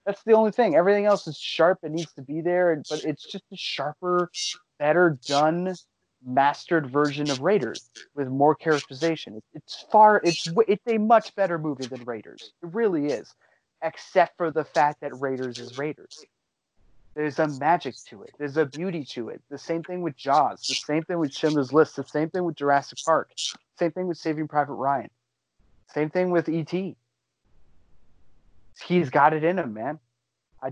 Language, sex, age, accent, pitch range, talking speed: English, male, 30-49, American, 135-170 Hz, 175 wpm